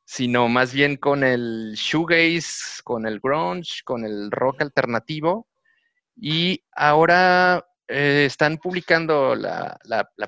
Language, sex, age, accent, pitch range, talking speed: Spanish, male, 30-49, Mexican, 125-170 Hz, 125 wpm